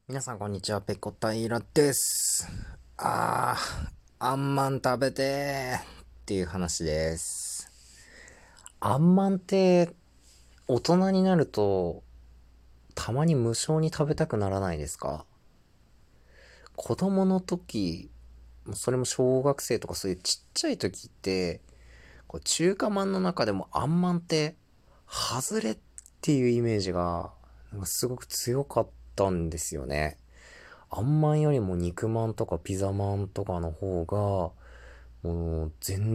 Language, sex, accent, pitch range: Japanese, male, native, 80-125 Hz